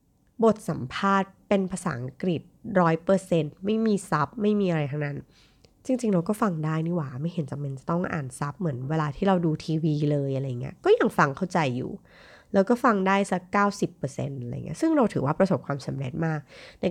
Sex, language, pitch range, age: female, Thai, 155-205 Hz, 20-39